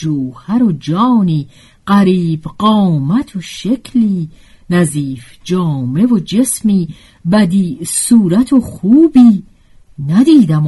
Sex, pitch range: female, 150-240 Hz